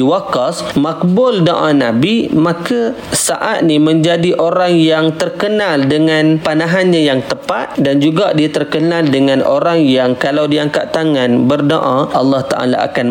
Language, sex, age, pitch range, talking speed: Malay, male, 30-49, 135-175 Hz, 135 wpm